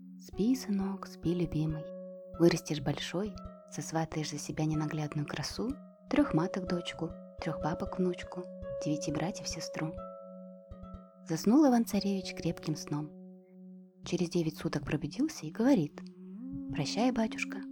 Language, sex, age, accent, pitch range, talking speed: Russian, female, 20-39, native, 160-235 Hz, 110 wpm